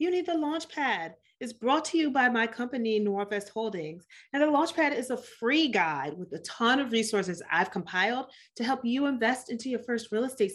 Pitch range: 200-275 Hz